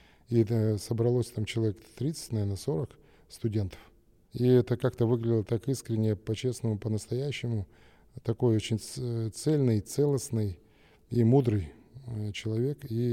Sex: male